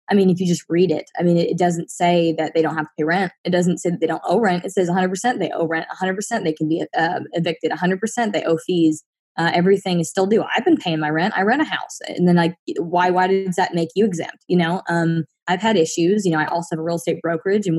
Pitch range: 160-185 Hz